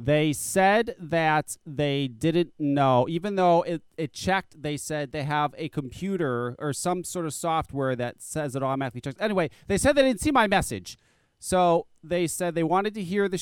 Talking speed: 190 wpm